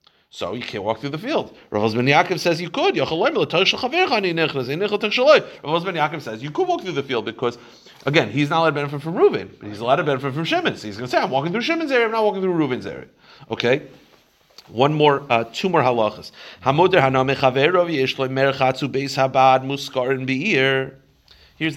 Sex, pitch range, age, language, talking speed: male, 115-155 Hz, 40-59, English, 170 wpm